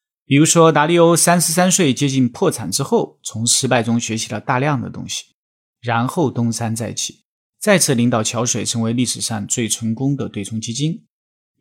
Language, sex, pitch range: Chinese, male, 115-150 Hz